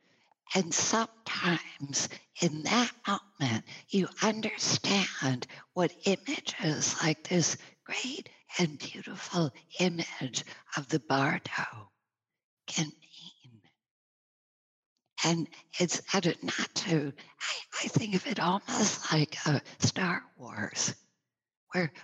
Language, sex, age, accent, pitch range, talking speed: English, female, 50-69, American, 140-190 Hz, 100 wpm